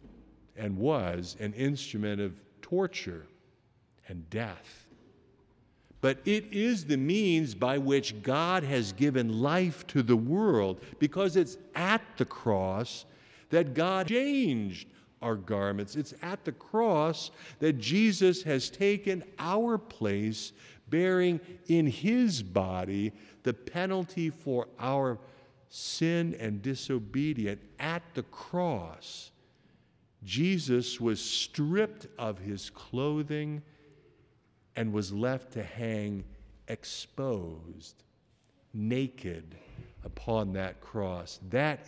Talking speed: 105 wpm